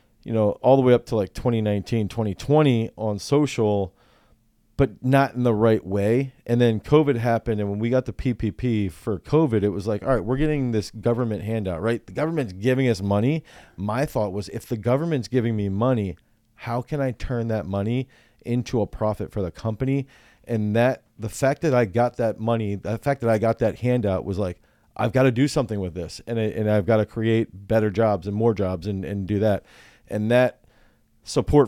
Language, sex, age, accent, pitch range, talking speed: English, male, 30-49, American, 105-125 Hz, 210 wpm